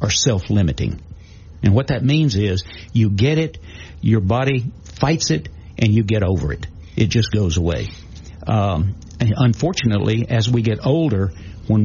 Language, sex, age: English, male, 60-79